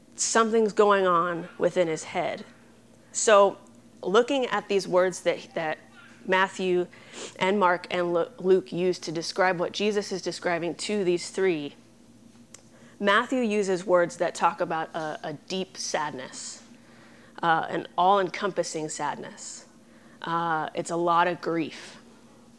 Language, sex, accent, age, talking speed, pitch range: English, female, American, 20-39, 130 wpm, 170-205 Hz